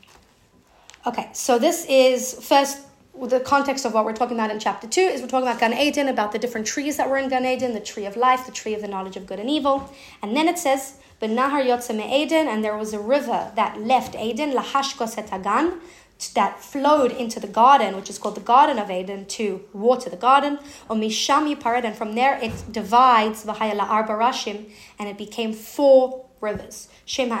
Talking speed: 185 wpm